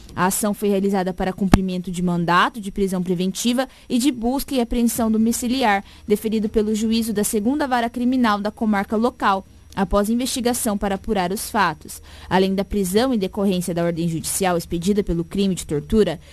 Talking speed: 170 wpm